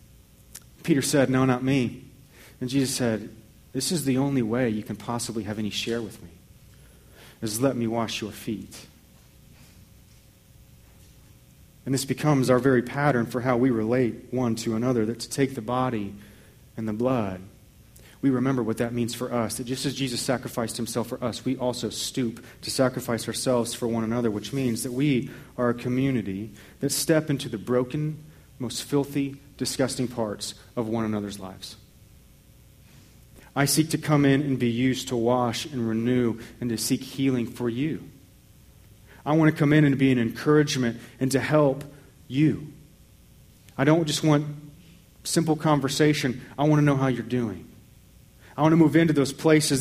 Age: 30-49